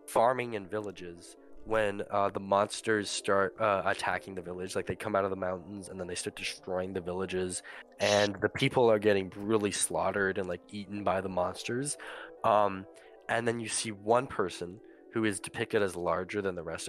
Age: 20-39